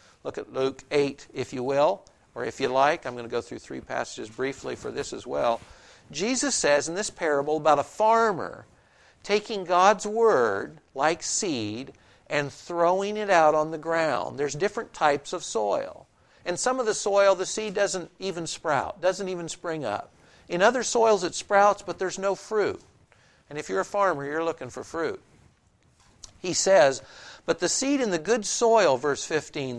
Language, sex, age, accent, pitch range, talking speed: English, male, 60-79, American, 145-205 Hz, 185 wpm